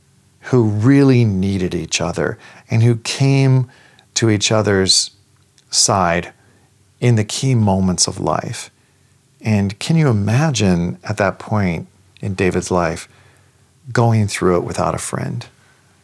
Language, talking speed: English, 125 wpm